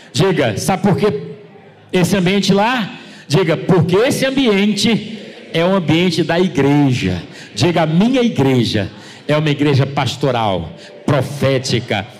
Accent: Brazilian